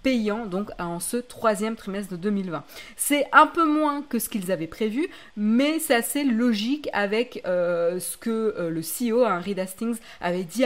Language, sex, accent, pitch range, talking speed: French, female, French, 185-235 Hz, 185 wpm